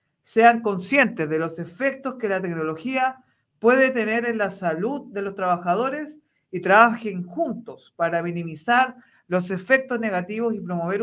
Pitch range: 190-250 Hz